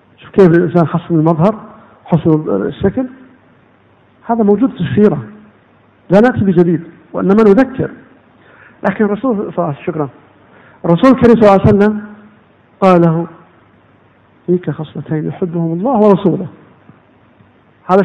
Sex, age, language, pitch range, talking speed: male, 50-69, Arabic, 155-225 Hz, 110 wpm